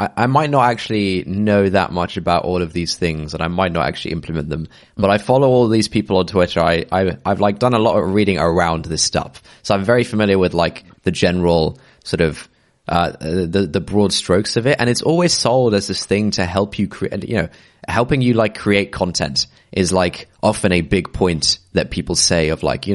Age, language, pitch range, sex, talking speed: 20-39, English, 85-110 Hz, male, 225 wpm